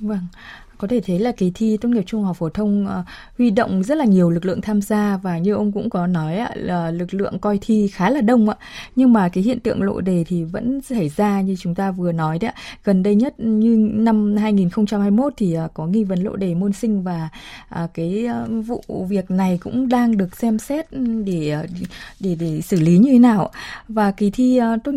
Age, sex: 20-39, female